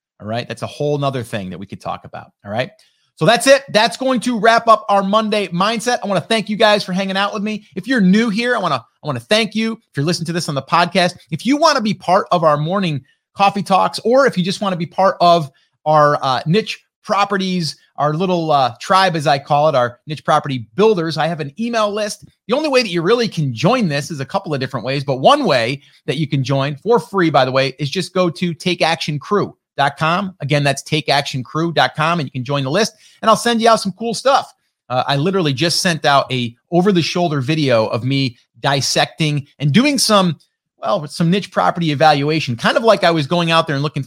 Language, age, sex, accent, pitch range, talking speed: English, 30-49, male, American, 140-195 Hz, 250 wpm